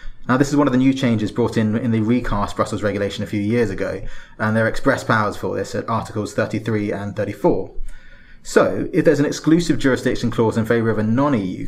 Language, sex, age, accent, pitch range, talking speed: English, male, 20-39, British, 110-130 Hz, 220 wpm